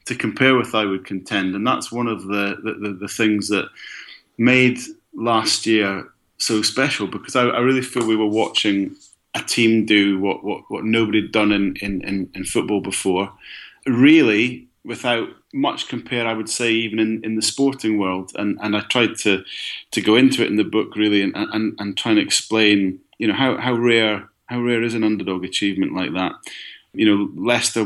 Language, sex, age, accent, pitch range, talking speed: English, male, 30-49, British, 100-115 Hz, 200 wpm